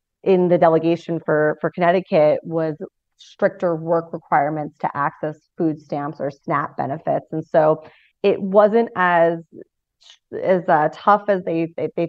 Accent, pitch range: American, 155-180 Hz